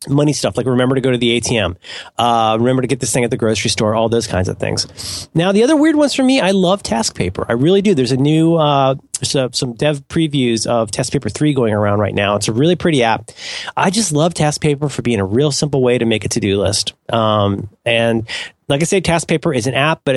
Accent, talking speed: American, 255 wpm